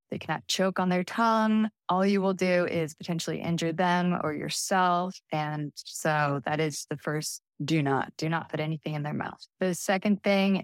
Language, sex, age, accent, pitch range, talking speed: English, female, 20-39, American, 160-190 Hz, 190 wpm